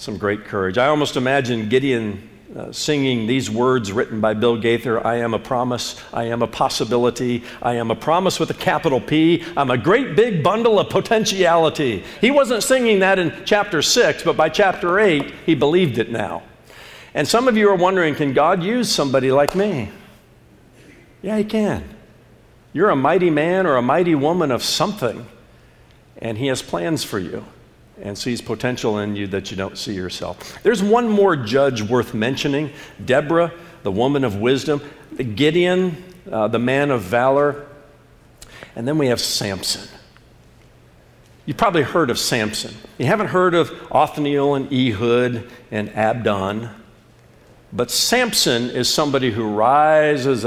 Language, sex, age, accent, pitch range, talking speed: English, male, 50-69, American, 115-155 Hz, 160 wpm